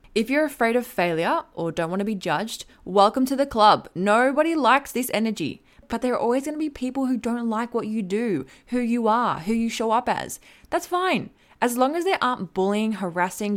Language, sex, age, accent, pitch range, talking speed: English, female, 20-39, Australian, 180-235 Hz, 215 wpm